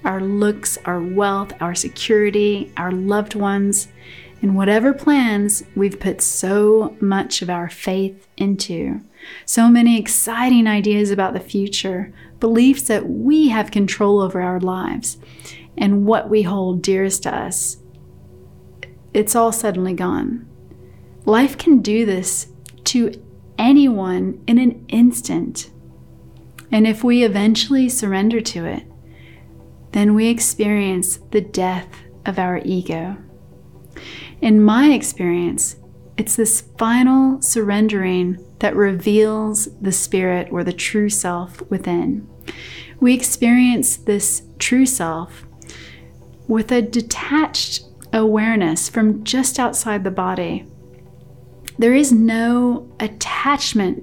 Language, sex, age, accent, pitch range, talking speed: English, female, 30-49, American, 180-230 Hz, 115 wpm